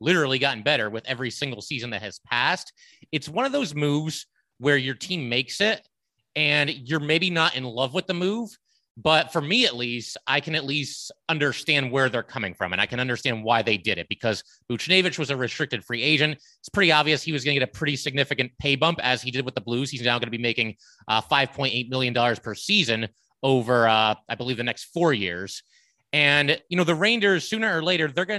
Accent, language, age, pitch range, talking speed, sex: American, English, 30-49, 125-155 Hz, 225 wpm, male